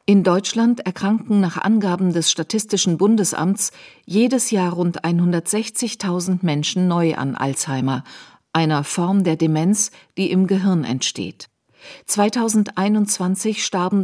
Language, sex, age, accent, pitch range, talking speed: German, female, 50-69, German, 160-200 Hz, 110 wpm